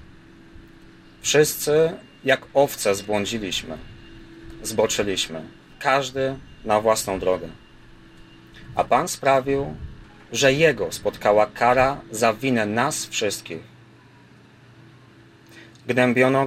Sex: male